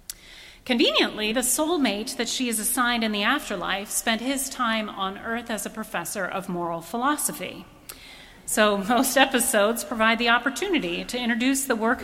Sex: female